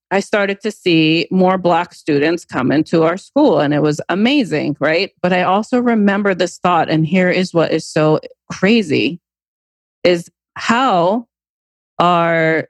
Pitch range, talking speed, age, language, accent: 155-190 Hz, 150 wpm, 40-59, English, American